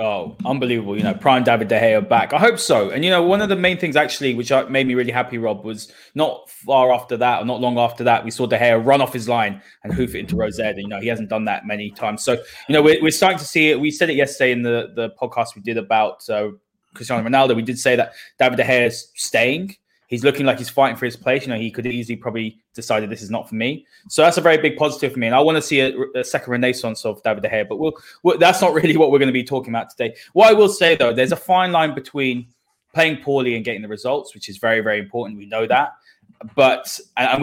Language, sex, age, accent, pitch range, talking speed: English, male, 20-39, British, 115-145 Hz, 275 wpm